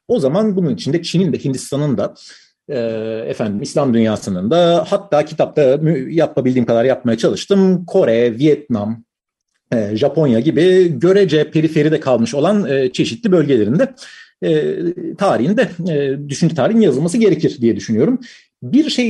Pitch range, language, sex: 120-195 Hz, Turkish, male